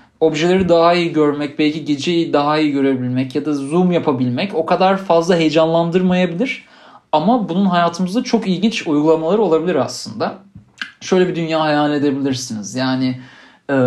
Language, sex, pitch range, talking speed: Turkish, male, 135-175 Hz, 140 wpm